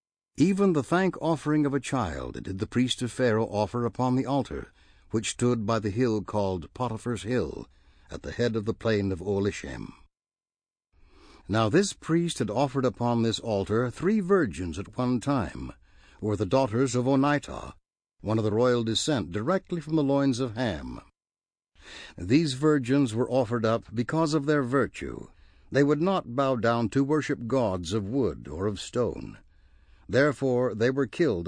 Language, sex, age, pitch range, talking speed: English, male, 60-79, 105-140 Hz, 165 wpm